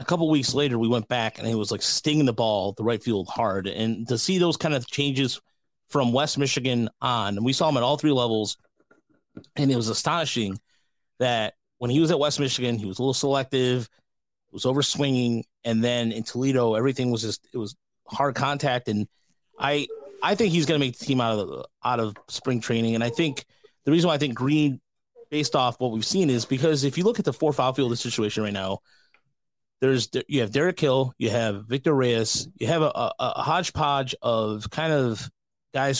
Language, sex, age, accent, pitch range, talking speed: English, male, 30-49, American, 115-145 Hz, 220 wpm